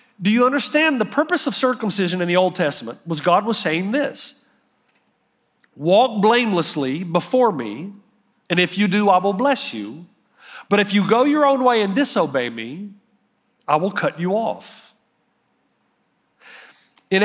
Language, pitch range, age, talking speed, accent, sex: English, 175-240 Hz, 40-59, 155 wpm, American, male